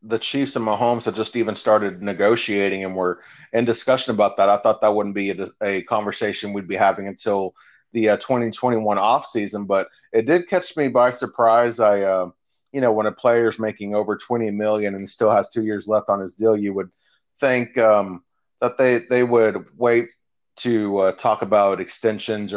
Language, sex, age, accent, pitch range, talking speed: English, male, 30-49, American, 100-120 Hz, 190 wpm